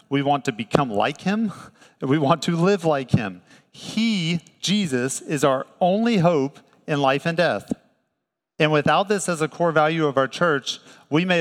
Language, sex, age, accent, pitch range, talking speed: English, male, 40-59, American, 130-160 Hz, 180 wpm